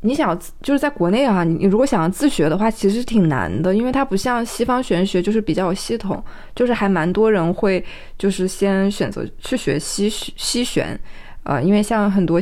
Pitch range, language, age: 170-215 Hz, Chinese, 20-39